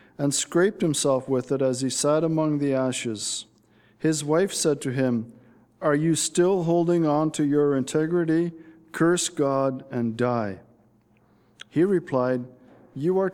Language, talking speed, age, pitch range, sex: English, 145 wpm, 50-69, 120-165 Hz, male